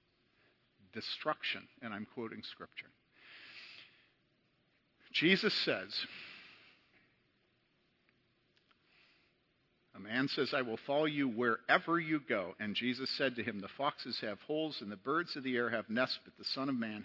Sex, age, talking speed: male, 50-69, 135 wpm